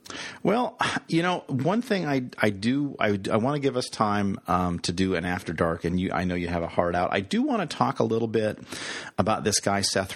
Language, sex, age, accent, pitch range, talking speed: English, male, 40-59, American, 90-110 Hz, 250 wpm